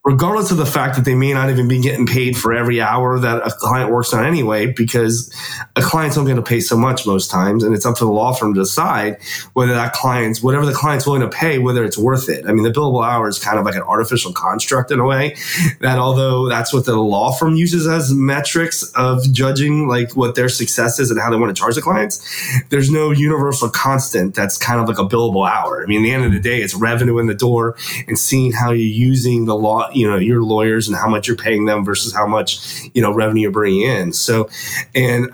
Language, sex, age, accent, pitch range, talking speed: English, male, 20-39, American, 115-140 Hz, 250 wpm